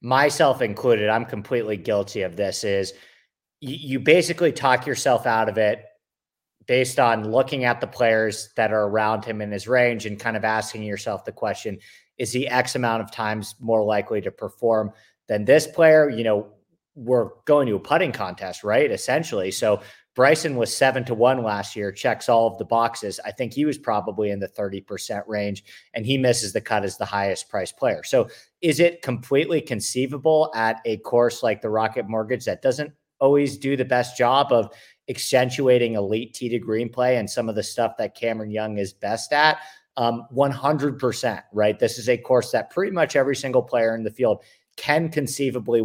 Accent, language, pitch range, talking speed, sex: American, English, 110-135 Hz, 190 wpm, male